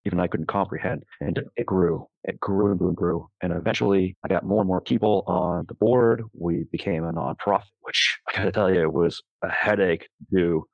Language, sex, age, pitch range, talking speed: English, male, 30-49, 90-100 Hz, 210 wpm